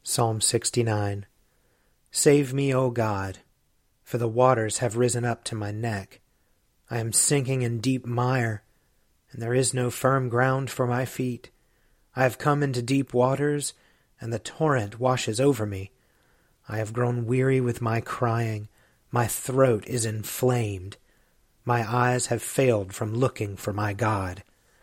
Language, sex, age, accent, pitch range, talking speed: English, male, 40-59, American, 115-140 Hz, 150 wpm